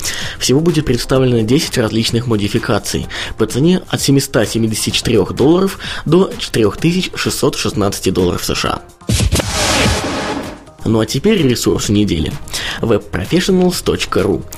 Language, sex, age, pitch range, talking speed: Russian, male, 20-39, 110-145 Hz, 85 wpm